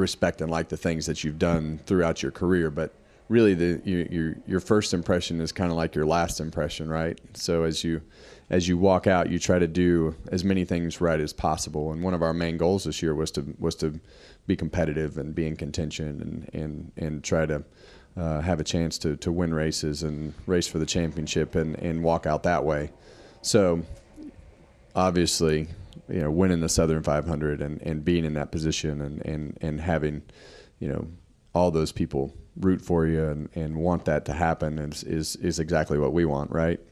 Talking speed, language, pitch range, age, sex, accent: 205 wpm, English, 80-85 Hz, 30-49, male, American